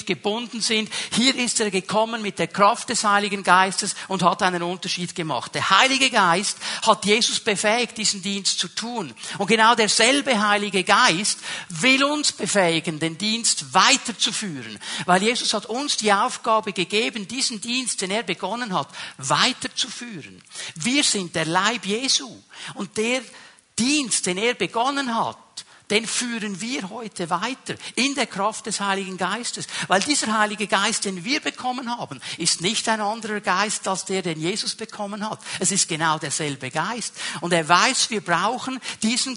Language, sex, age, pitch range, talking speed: German, male, 50-69, 185-230 Hz, 160 wpm